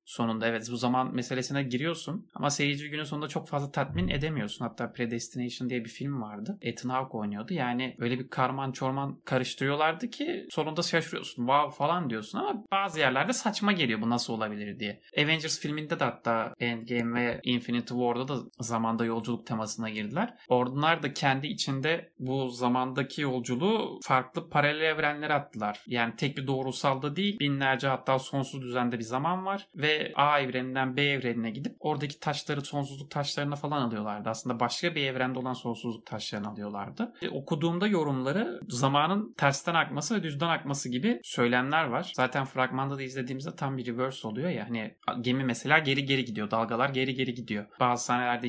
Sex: male